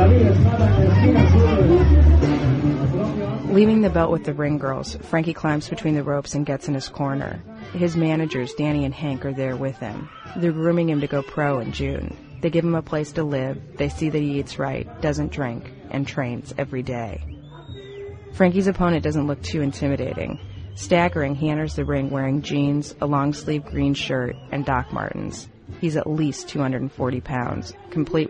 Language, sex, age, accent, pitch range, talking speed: English, female, 30-49, American, 125-155 Hz, 170 wpm